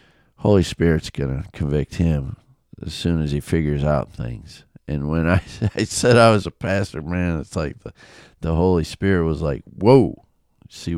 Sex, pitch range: male, 80-105 Hz